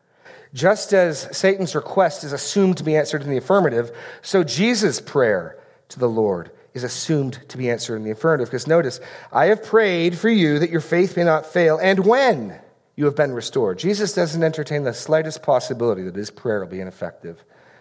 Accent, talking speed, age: American, 190 wpm, 40-59